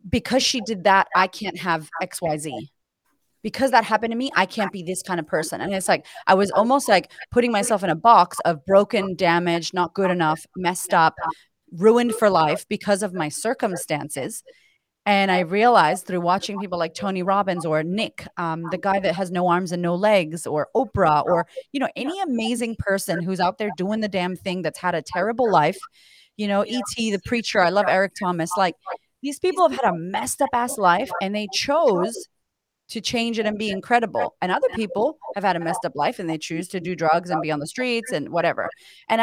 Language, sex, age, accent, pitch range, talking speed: English, female, 30-49, American, 175-220 Hz, 215 wpm